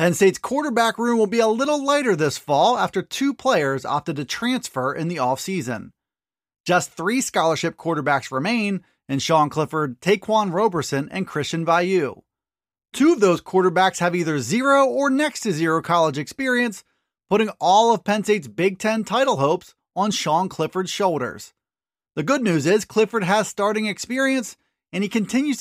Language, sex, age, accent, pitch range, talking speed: English, male, 30-49, American, 170-225 Hz, 160 wpm